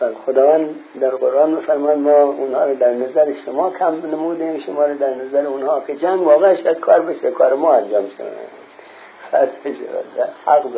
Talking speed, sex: 160 wpm, male